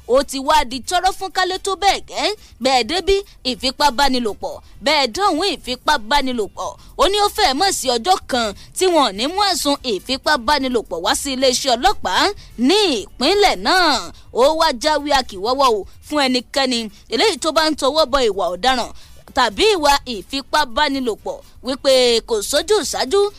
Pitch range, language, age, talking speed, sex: 260-375 Hz, English, 20-39, 160 wpm, female